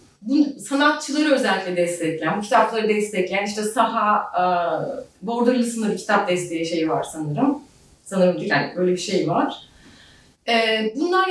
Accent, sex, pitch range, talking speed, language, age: native, female, 180-270 Hz, 125 wpm, Turkish, 30-49